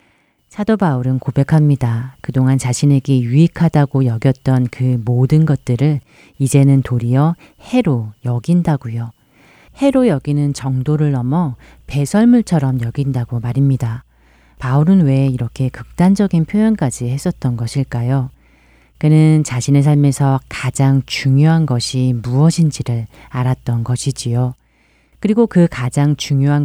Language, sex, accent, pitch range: Korean, female, native, 125-155 Hz